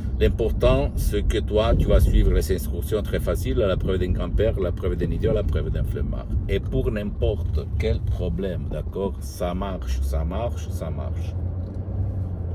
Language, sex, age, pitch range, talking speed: Italian, male, 60-79, 85-100 Hz, 165 wpm